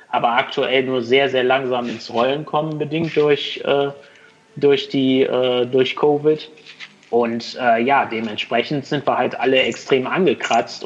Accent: German